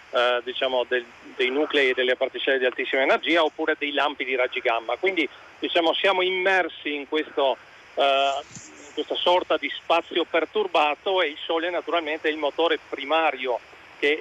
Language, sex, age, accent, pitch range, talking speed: Italian, male, 40-59, native, 135-160 Hz, 165 wpm